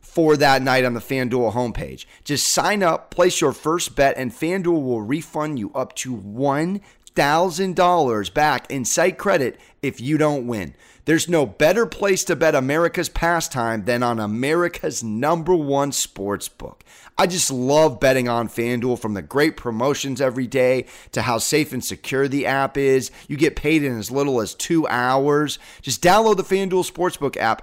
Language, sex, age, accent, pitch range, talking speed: English, male, 30-49, American, 125-170 Hz, 170 wpm